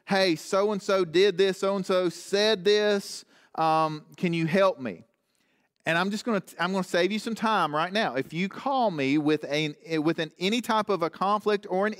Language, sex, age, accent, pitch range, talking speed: English, male, 40-59, American, 155-215 Hz, 190 wpm